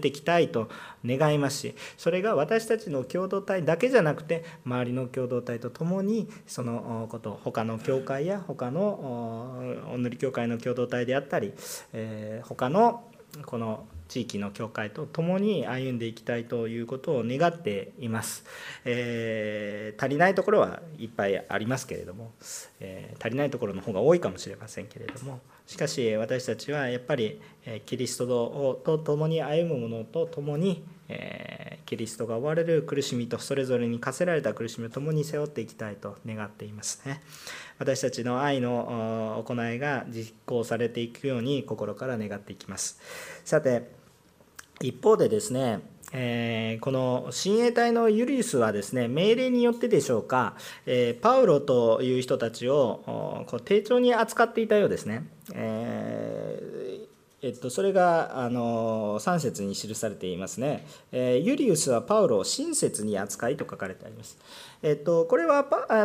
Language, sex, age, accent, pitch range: Japanese, male, 40-59, native, 115-195 Hz